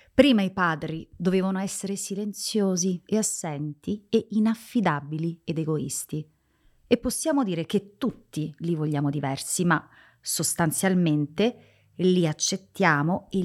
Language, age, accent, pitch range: Italian, 30-49, native, 155-205 Hz